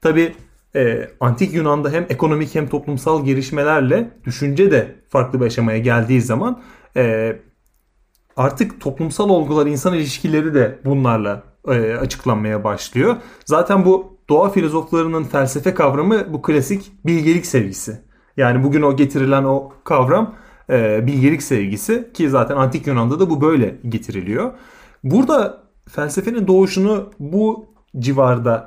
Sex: male